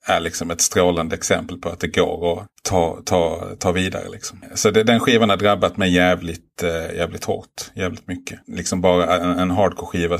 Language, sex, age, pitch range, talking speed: Swedish, male, 30-49, 85-90 Hz, 180 wpm